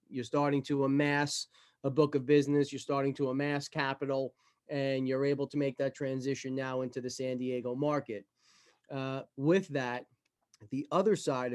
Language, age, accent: English, 30-49, American